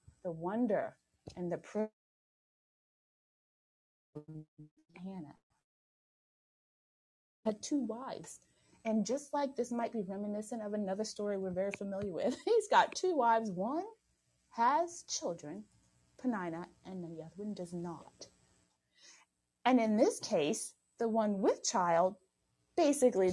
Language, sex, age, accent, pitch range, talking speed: English, female, 30-49, American, 160-225 Hz, 120 wpm